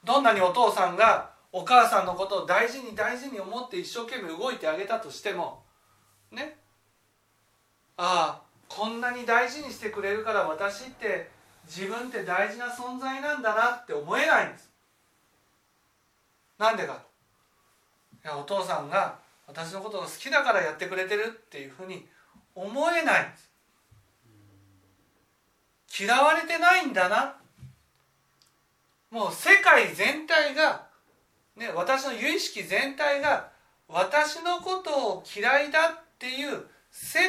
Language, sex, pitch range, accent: Japanese, male, 185-280 Hz, native